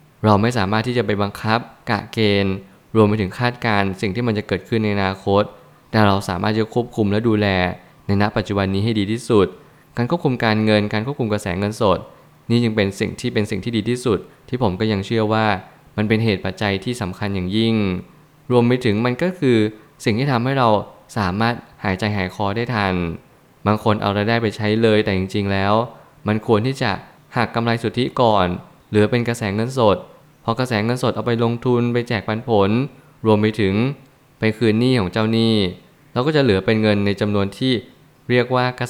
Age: 20-39